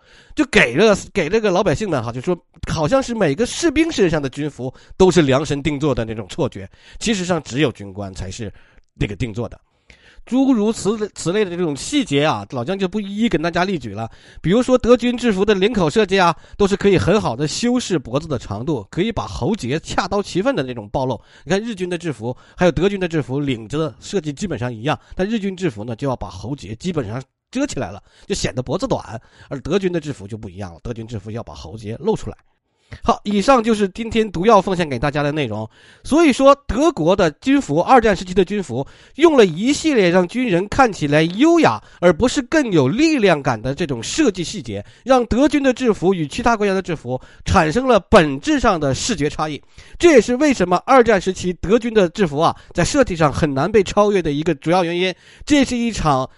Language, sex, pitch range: Chinese, male, 135-215 Hz